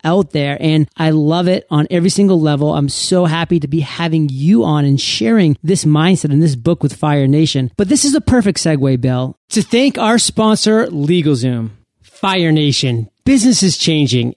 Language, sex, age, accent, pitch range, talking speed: English, male, 30-49, American, 150-205 Hz, 190 wpm